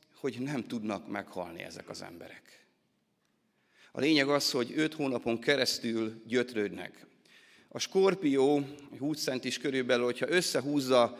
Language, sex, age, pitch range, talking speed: Hungarian, male, 30-49, 125-150 Hz, 120 wpm